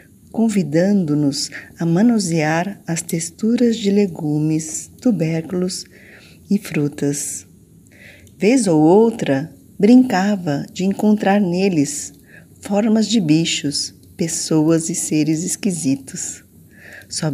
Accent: Brazilian